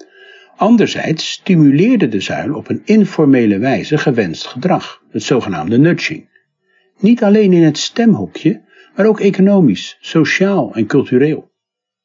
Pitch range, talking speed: 135-220 Hz, 120 wpm